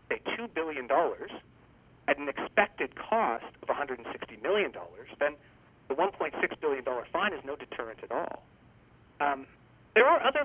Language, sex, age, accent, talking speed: English, male, 40-59, American, 140 wpm